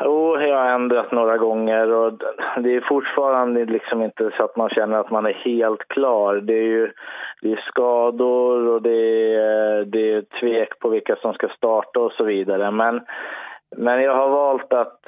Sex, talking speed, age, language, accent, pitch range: male, 185 wpm, 20-39, Swedish, native, 110-130 Hz